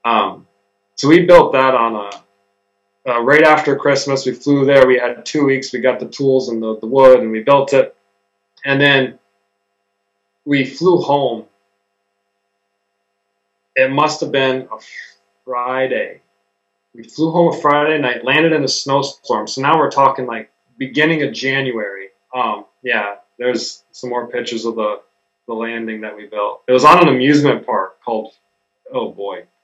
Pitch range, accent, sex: 105-135 Hz, American, male